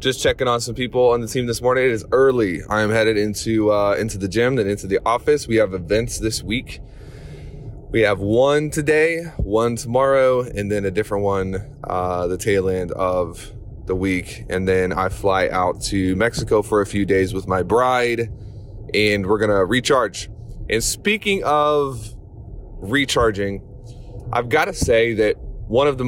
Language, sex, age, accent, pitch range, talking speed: English, male, 20-39, American, 100-120 Hz, 175 wpm